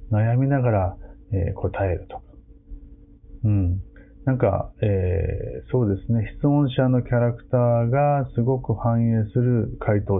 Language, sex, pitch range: Japanese, male, 95-125 Hz